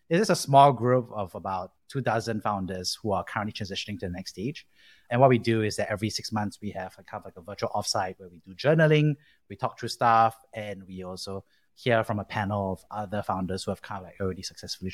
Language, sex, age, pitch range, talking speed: English, male, 30-49, 100-130 Hz, 245 wpm